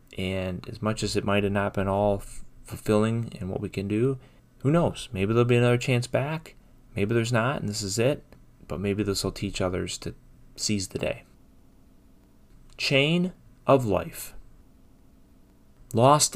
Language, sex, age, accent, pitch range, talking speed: English, male, 30-49, American, 95-125 Hz, 165 wpm